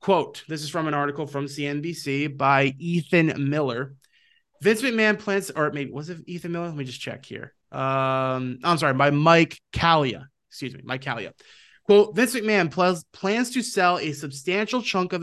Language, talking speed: English, 180 wpm